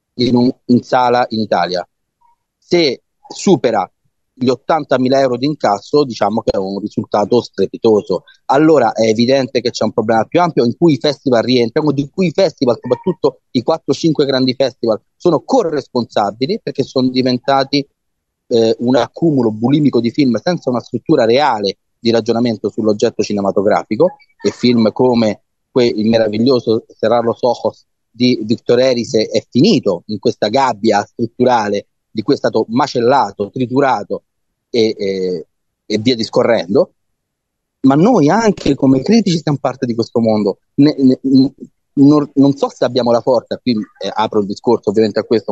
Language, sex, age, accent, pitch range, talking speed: Italian, male, 30-49, native, 110-140 Hz, 150 wpm